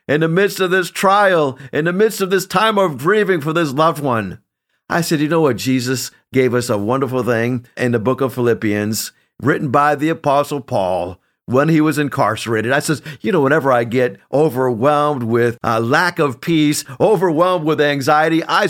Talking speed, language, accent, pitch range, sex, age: 195 wpm, English, American, 125-170 Hz, male, 50-69